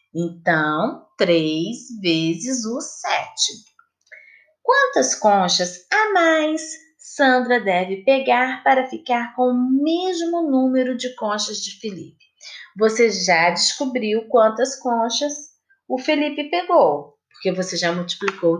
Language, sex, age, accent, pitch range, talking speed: Portuguese, female, 30-49, Brazilian, 195-310 Hz, 110 wpm